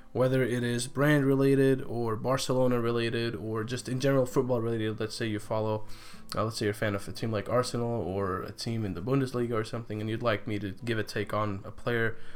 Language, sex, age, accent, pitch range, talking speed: English, male, 10-29, American, 105-125 Hz, 235 wpm